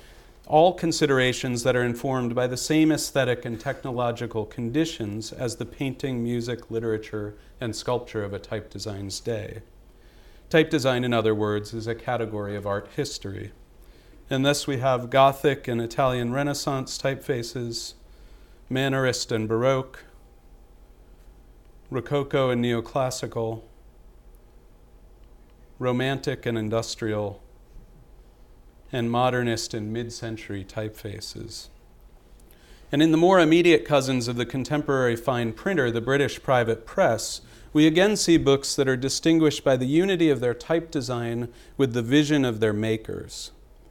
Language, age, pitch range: English, 40-59, 115-140 Hz